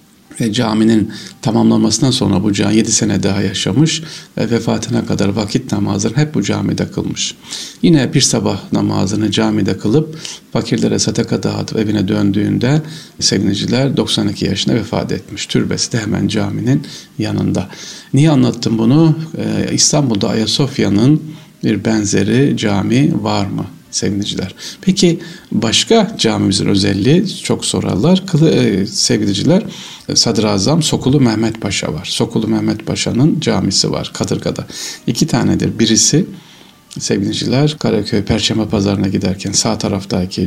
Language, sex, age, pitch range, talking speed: Turkish, male, 50-69, 100-145 Hz, 120 wpm